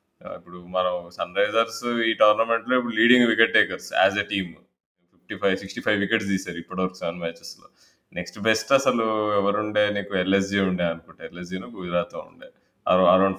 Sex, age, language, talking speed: male, 20-39, Telugu, 150 wpm